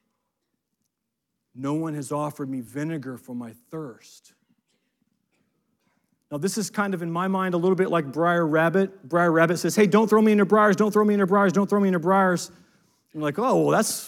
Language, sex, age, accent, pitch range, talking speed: English, male, 40-59, American, 145-185 Hz, 210 wpm